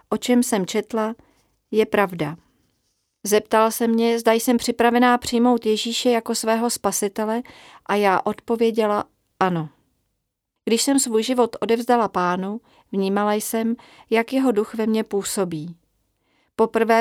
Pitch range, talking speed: 195-235 Hz, 125 wpm